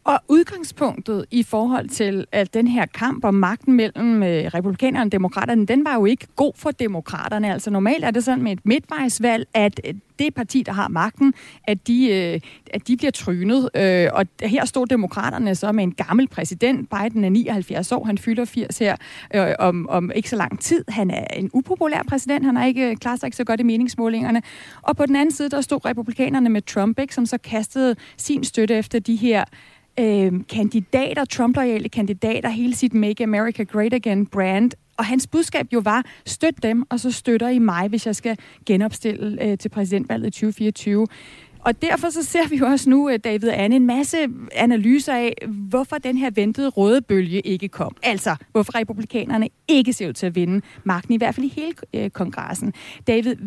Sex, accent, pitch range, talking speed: female, native, 205-255 Hz, 195 wpm